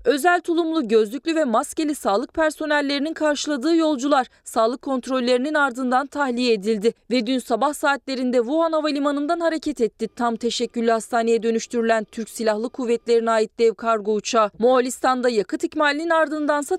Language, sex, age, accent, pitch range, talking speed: Turkish, female, 30-49, native, 230-290 Hz, 130 wpm